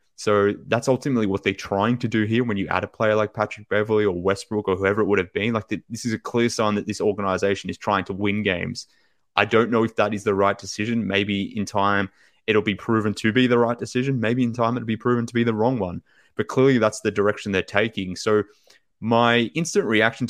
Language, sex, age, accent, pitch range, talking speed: English, male, 20-39, Australian, 95-110 Hz, 240 wpm